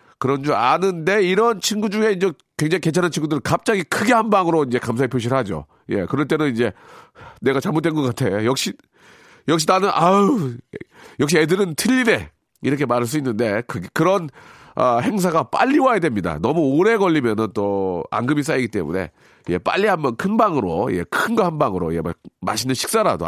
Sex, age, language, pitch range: male, 40-59, Korean, 125-190 Hz